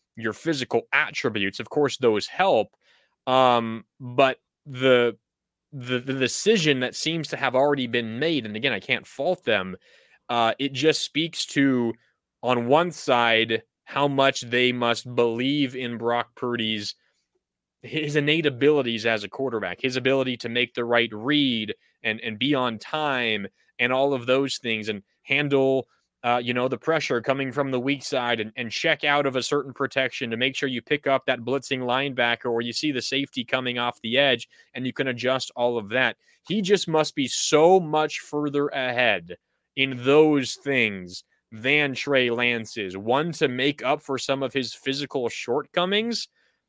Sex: male